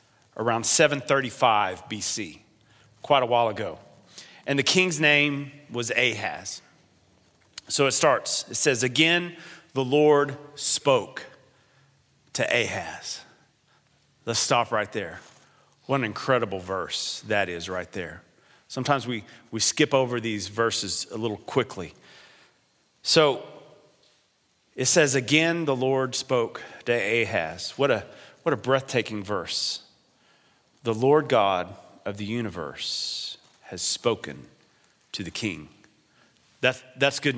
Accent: American